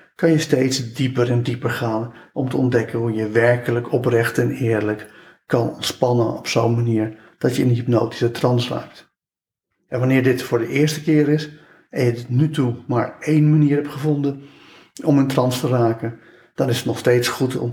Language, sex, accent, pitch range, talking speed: Dutch, male, Dutch, 120-160 Hz, 195 wpm